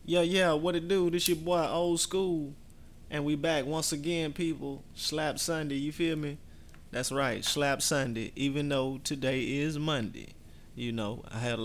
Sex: male